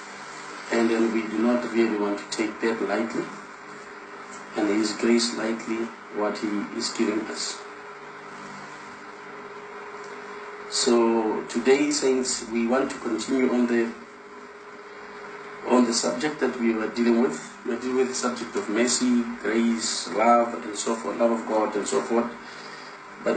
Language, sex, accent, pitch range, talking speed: English, male, South African, 110-120 Hz, 145 wpm